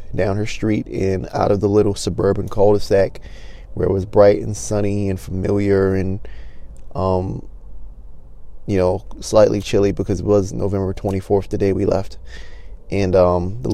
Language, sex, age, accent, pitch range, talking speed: English, male, 20-39, American, 90-100 Hz, 165 wpm